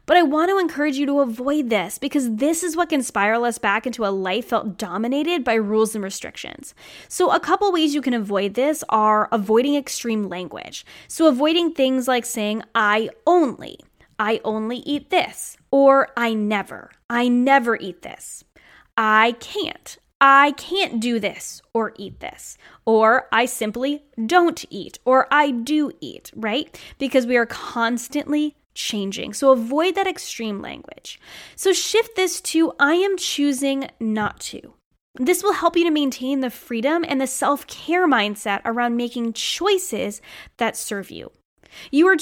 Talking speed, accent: 165 wpm, American